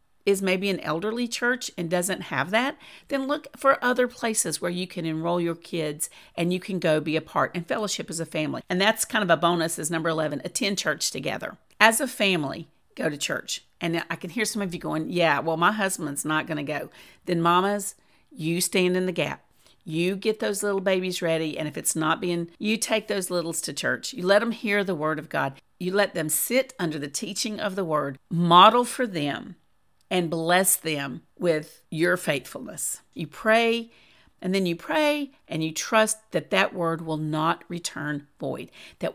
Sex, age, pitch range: female, 40-59, 165-215 Hz